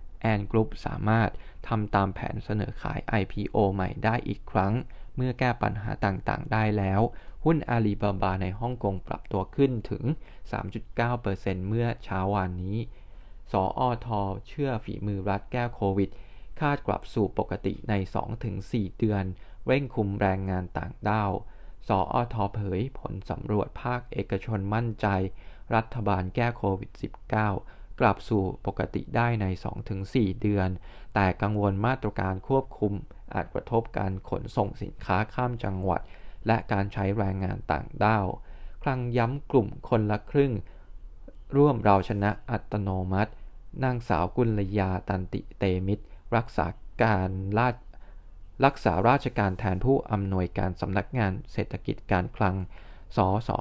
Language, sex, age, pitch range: Thai, male, 20-39, 95-120 Hz